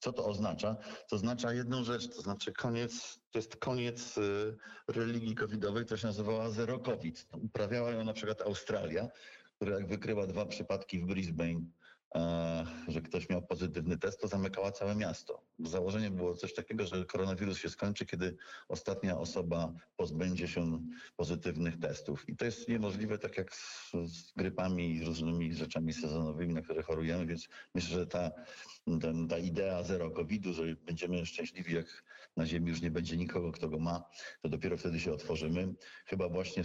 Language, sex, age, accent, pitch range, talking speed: Polish, male, 50-69, native, 85-110 Hz, 170 wpm